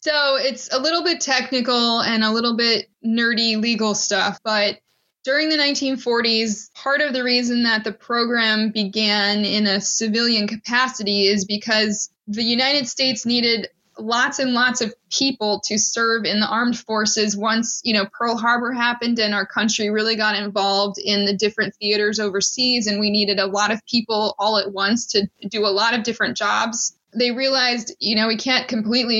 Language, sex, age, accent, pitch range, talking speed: English, female, 20-39, American, 210-240 Hz, 180 wpm